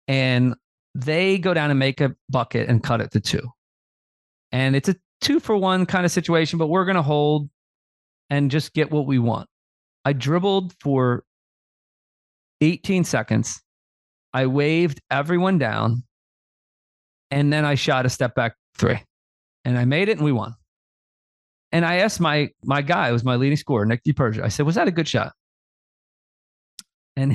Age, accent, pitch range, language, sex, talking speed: 40-59, American, 115-160 Hz, English, male, 170 wpm